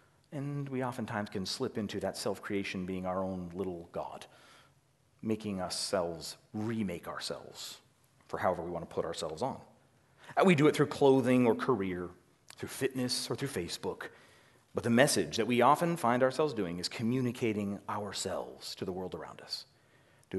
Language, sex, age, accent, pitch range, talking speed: English, male, 40-59, American, 105-140 Hz, 160 wpm